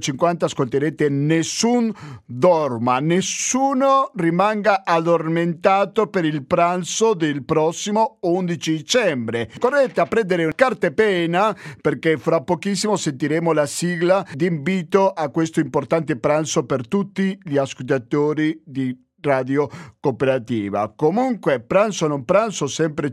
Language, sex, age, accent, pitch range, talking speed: Italian, male, 50-69, native, 145-190 Hz, 110 wpm